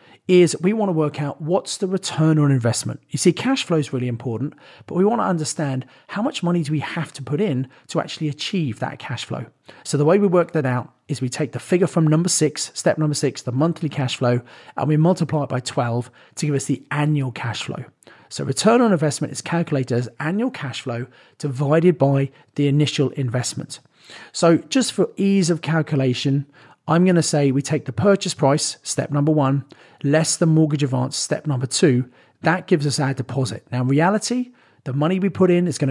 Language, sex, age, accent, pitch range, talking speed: English, male, 40-59, British, 130-170 Hz, 215 wpm